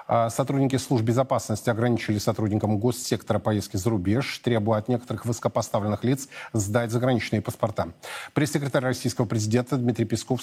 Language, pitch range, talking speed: Russian, 115-135 Hz, 125 wpm